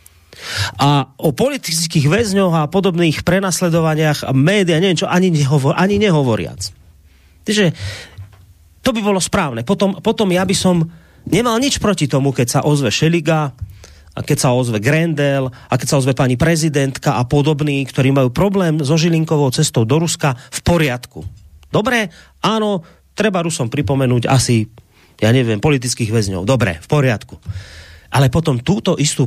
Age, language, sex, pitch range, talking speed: 30-49, Slovak, male, 125-175 Hz, 150 wpm